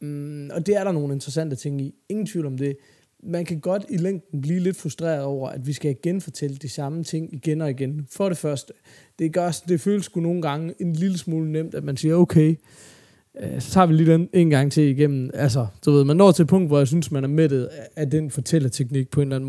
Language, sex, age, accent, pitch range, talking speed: Danish, male, 20-39, native, 140-170 Hz, 250 wpm